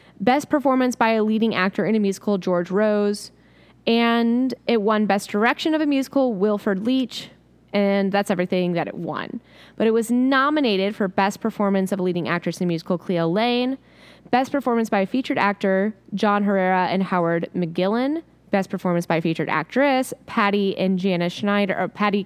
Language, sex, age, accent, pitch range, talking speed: English, female, 10-29, American, 185-230 Hz, 180 wpm